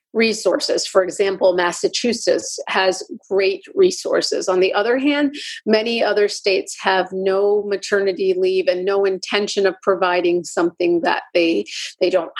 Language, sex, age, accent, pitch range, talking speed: English, female, 40-59, American, 190-280 Hz, 135 wpm